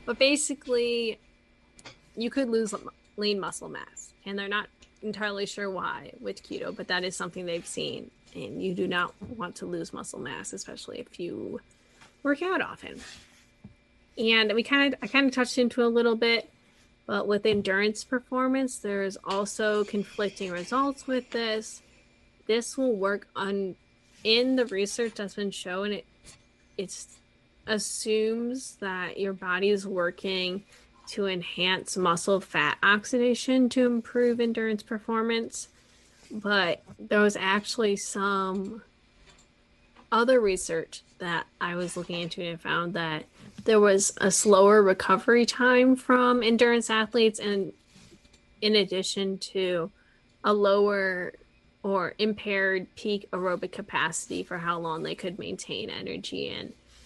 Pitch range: 190-235 Hz